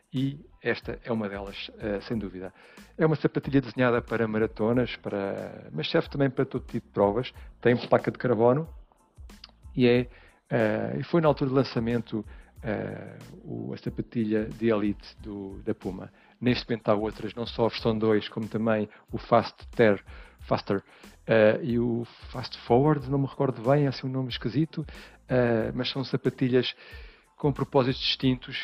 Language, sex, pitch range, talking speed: Portuguese, male, 110-135 Hz, 170 wpm